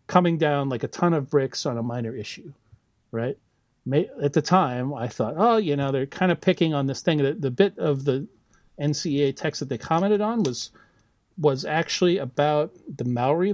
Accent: American